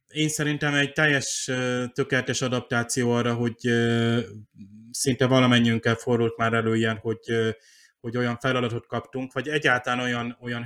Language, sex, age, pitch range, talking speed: Hungarian, male, 30-49, 120-135 Hz, 130 wpm